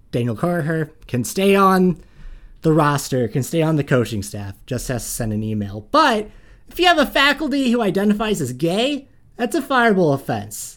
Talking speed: 185 wpm